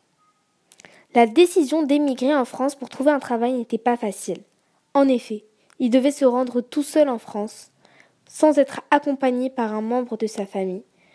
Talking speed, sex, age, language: 165 wpm, female, 10-29, French